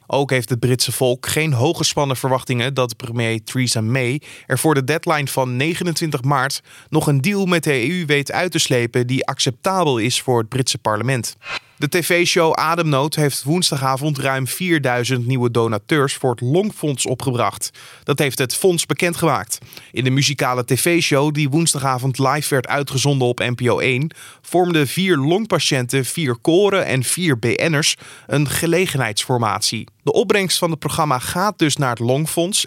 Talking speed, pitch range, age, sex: 155 wpm, 130-165 Hz, 20-39, male